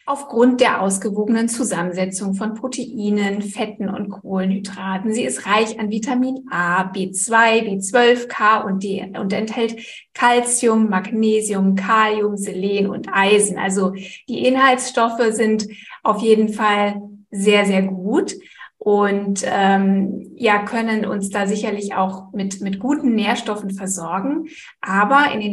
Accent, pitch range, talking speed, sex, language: German, 200-235 Hz, 125 wpm, female, German